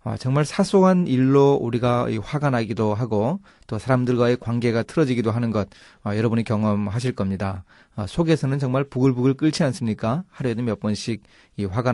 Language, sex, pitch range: Korean, male, 110-155 Hz